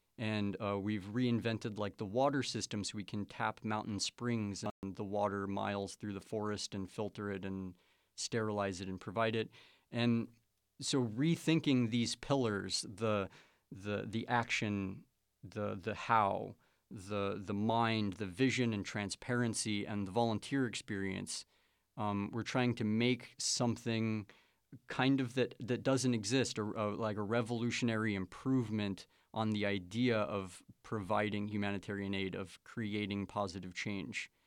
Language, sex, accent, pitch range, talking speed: English, male, American, 100-120 Hz, 145 wpm